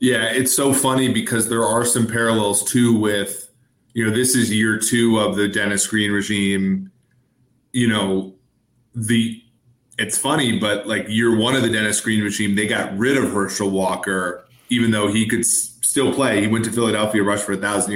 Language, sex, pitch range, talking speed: English, male, 105-125 Hz, 185 wpm